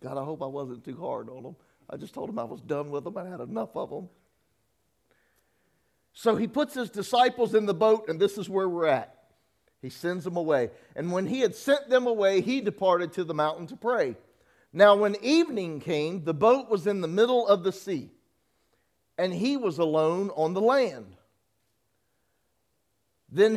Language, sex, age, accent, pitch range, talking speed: English, male, 50-69, American, 125-190 Hz, 195 wpm